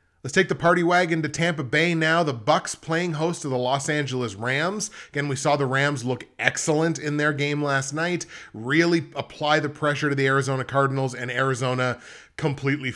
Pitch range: 125-150 Hz